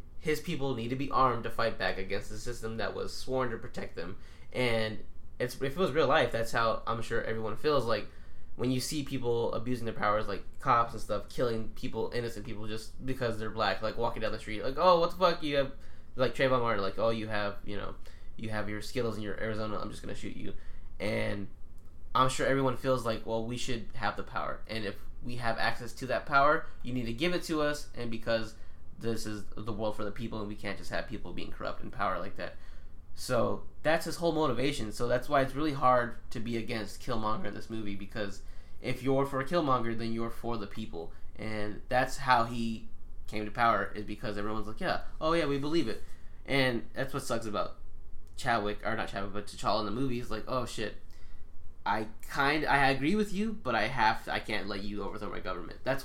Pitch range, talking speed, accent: 100-125 Hz, 230 wpm, American